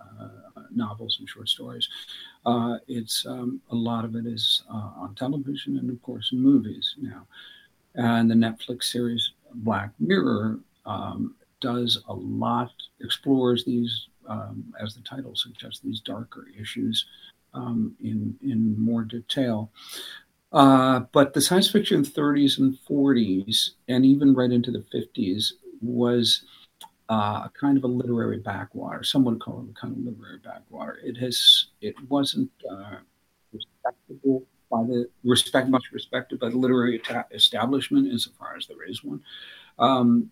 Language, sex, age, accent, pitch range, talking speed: English, male, 50-69, American, 115-135 Hz, 145 wpm